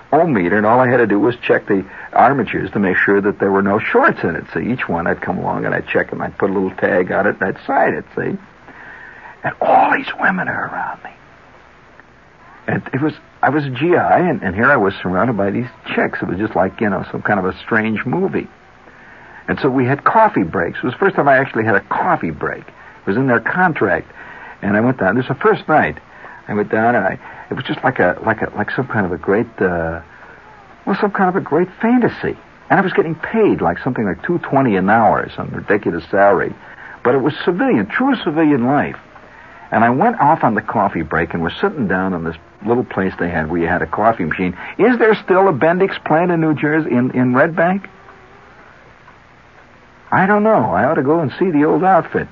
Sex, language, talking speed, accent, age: male, English, 235 wpm, American, 60-79